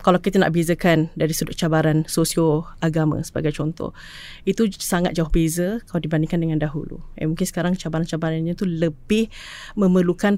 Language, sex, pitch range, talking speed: Malay, female, 160-190 Hz, 150 wpm